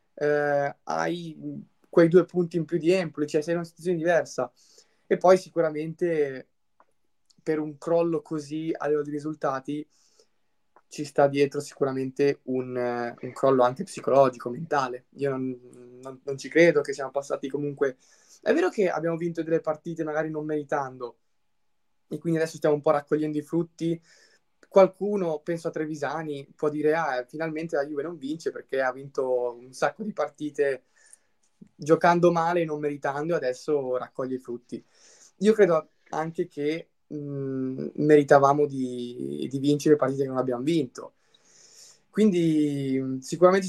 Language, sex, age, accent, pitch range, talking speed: Italian, male, 20-39, native, 135-165 Hz, 150 wpm